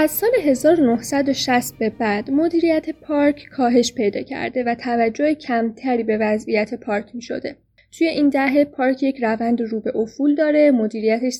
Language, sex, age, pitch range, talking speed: Persian, female, 10-29, 225-300 Hz, 155 wpm